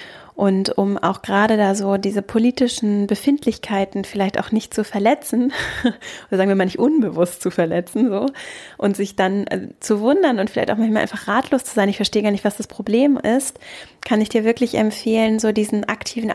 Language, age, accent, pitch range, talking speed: German, 10-29, German, 200-235 Hz, 190 wpm